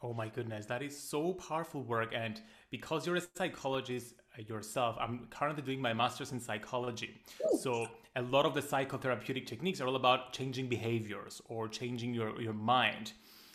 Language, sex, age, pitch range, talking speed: English, male, 30-49, 115-140 Hz, 170 wpm